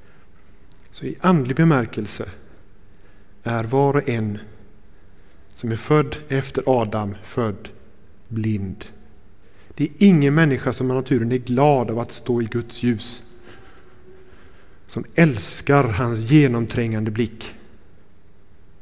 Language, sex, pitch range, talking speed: Swedish, male, 100-145 Hz, 110 wpm